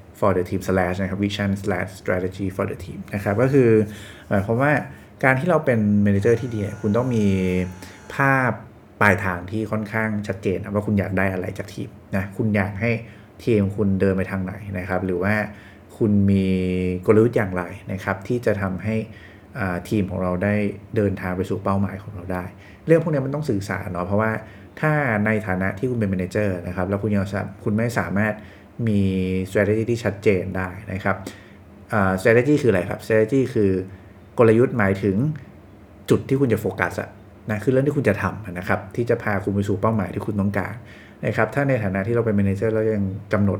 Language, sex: English, male